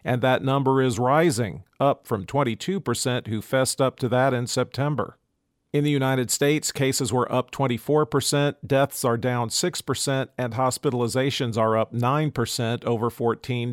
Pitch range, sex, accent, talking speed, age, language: 120-140 Hz, male, American, 150 wpm, 50-69, English